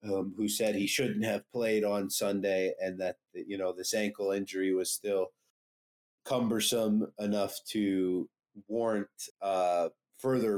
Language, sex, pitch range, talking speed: English, male, 95-110 Hz, 135 wpm